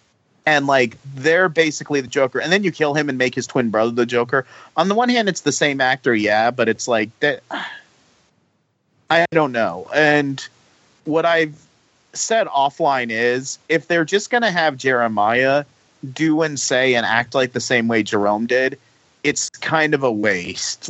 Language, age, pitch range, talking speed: English, 30-49, 115-150 Hz, 180 wpm